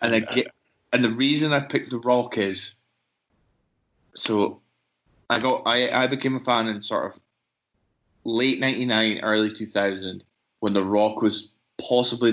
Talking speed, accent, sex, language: 150 wpm, British, male, English